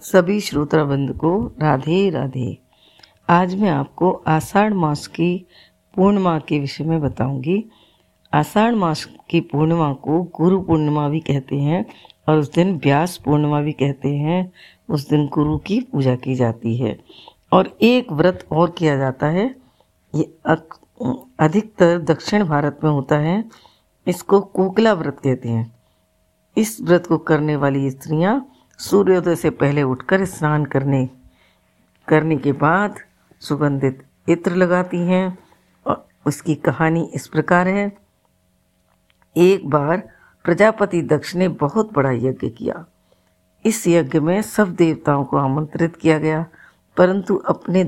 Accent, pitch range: native, 140-185 Hz